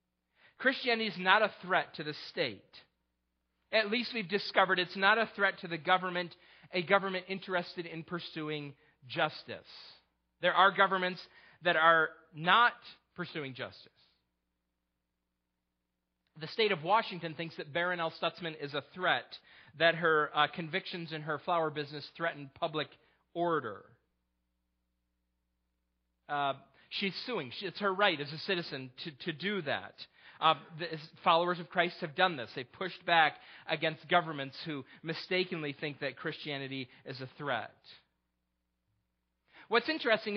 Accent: American